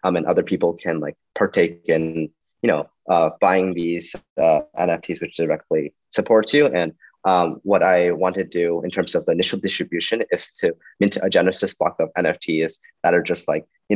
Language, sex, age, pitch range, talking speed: English, male, 30-49, 85-105 Hz, 195 wpm